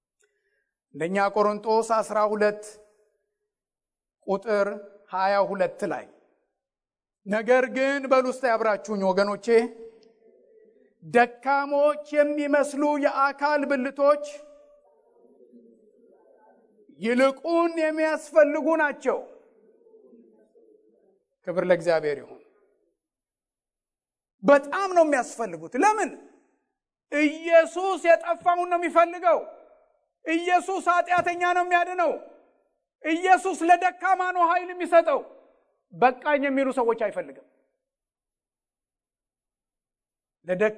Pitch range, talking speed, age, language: 225-340 Hz, 40 wpm, 50-69, English